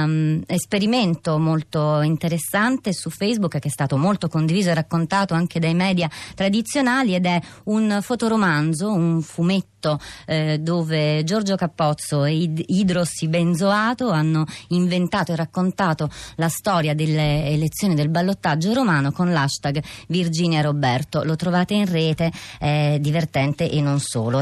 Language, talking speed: Italian, 130 wpm